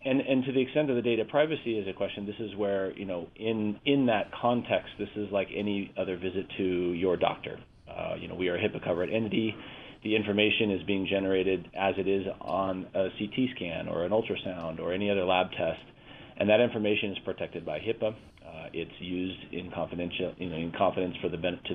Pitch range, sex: 90-115 Hz, male